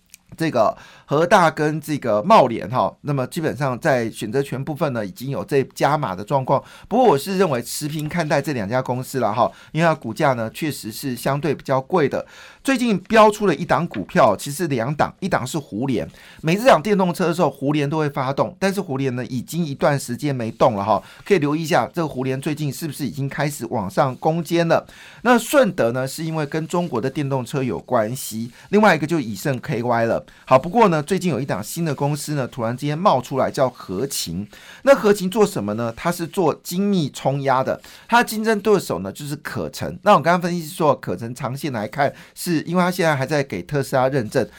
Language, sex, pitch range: Chinese, male, 130-170 Hz